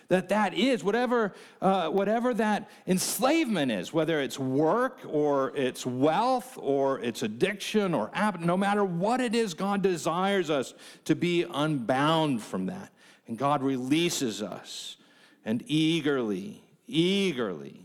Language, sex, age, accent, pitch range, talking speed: English, male, 50-69, American, 135-215 Hz, 130 wpm